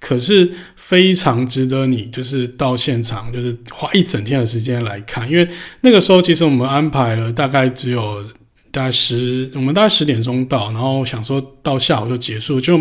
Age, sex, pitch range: 20-39, male, 115-135 Hz